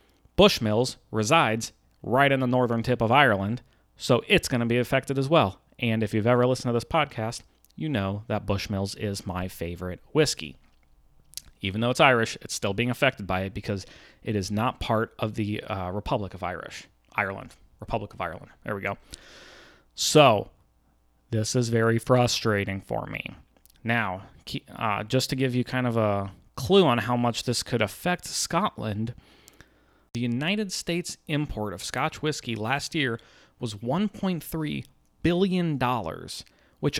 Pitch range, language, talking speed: 105-145 Hz, English, 160 wpm